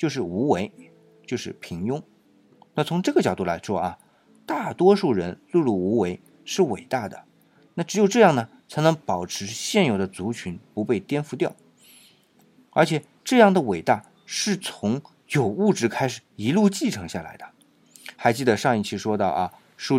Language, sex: Chinese, male